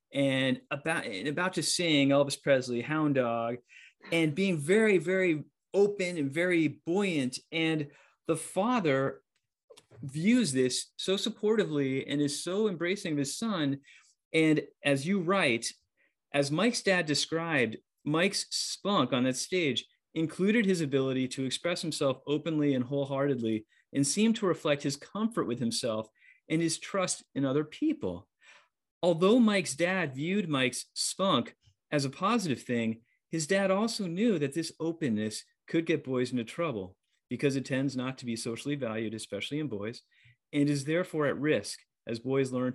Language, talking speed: English, 155 wpm